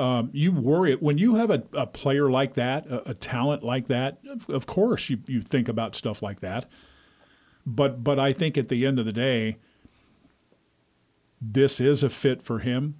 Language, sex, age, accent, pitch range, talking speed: English, male, 50-69, American, 115-145 Hz, 195 wpm